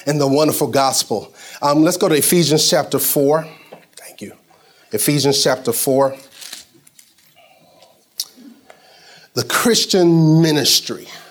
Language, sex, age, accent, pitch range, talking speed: English, male, 30-49, American, 135-175 Hz, 100 wpm